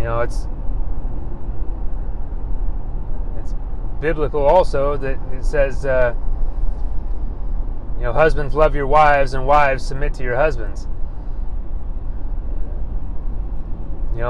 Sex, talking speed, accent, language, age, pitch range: male, 95 wpm, American, English, 30-49, 75-125 Hz